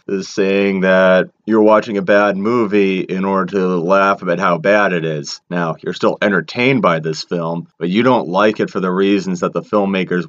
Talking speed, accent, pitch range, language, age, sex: 205 wpm, American, 90-100 Hz, English, 30-49, male